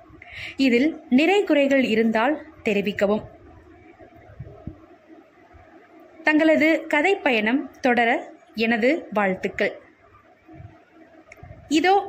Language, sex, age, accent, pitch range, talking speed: Tamil, female, 20-39, native, 225-330 Hz, 60 wpm